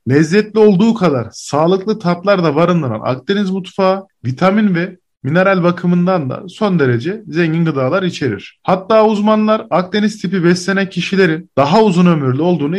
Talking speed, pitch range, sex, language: 135 wpm, 145-195 Hz, male, Turkish